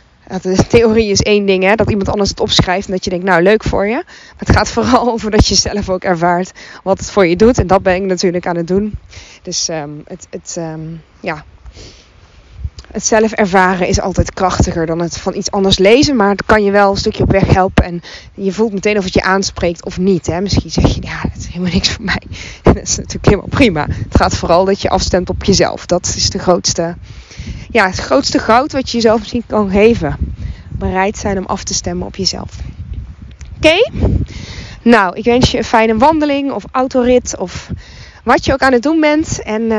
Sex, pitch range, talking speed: female, 190-245 Hz, 220 wpm